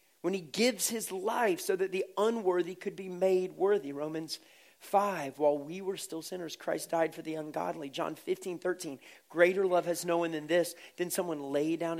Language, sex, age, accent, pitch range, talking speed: English, male, 40-59, American, 170-225 Hz, 195 wpm